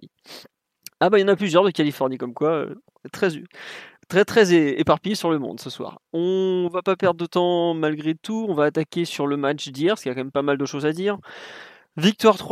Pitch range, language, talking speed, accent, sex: 140-170 Hz, French, 230 wpm, French, male